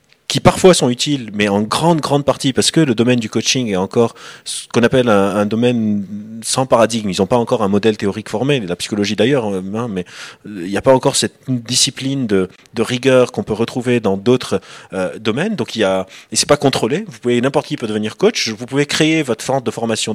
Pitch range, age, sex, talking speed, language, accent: 110-145 Hz, 30-49, male, 230 wpm, French, French